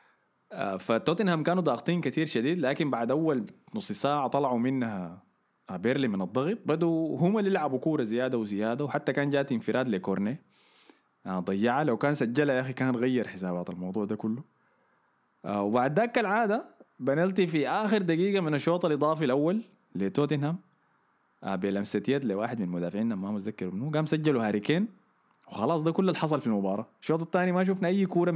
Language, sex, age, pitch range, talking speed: Arabic, male, 20-39, 115-165 Hz, 160 wpm